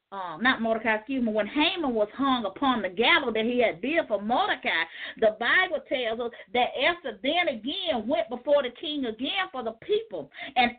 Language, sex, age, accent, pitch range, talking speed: English, female, 40-59, American, 230-320 Hz, 195 wpm